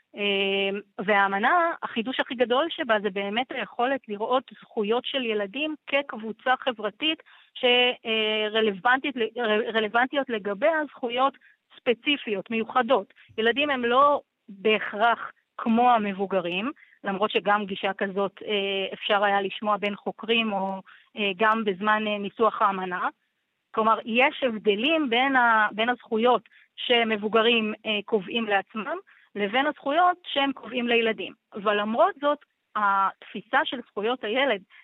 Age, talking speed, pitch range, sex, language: 30-49, 100 wpm, 210-255 Hz, female, Hebrew